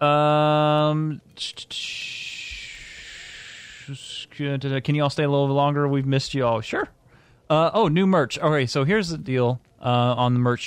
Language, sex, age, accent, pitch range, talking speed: English, male, 30-49, American, 115-145 Hz, 145 wpm